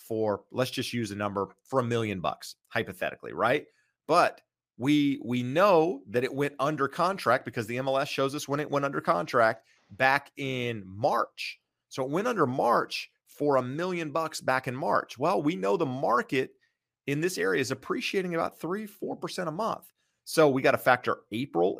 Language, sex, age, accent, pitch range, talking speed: English, male, 30-49, American, 115-155 Hz, 185 wpm